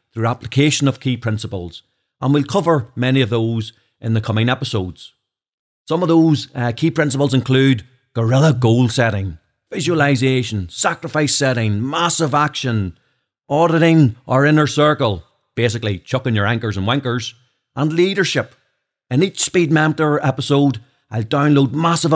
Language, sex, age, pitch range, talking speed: English, male, 40-59, 120-150 Hz, 135 wpm